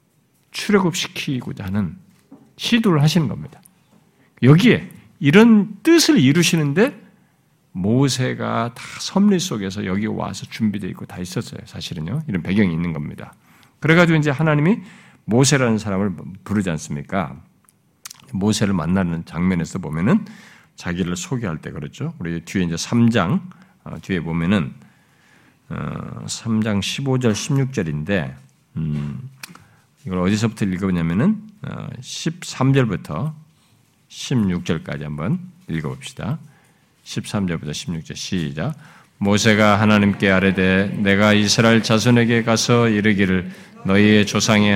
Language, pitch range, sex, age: Korean, 95-140 Hz, male, 50-69